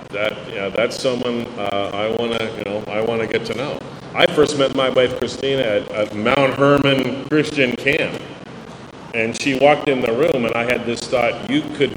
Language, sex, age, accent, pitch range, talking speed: English, male, 40-59, American, 120-155 Hz, 195 wpm